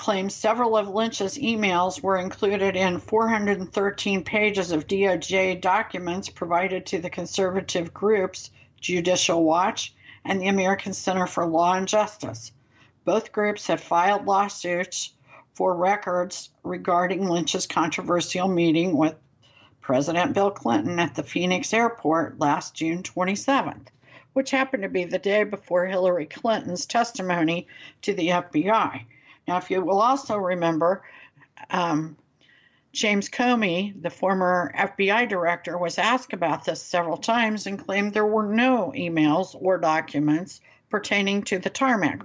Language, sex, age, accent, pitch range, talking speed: English, female, 60-79, American, 170-210 Hz, 135 wpm